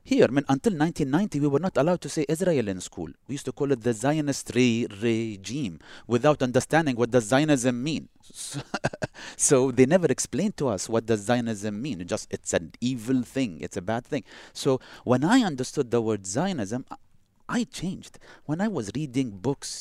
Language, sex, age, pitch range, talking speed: English, male, 30-49, 110-145 Hz, 195 wpm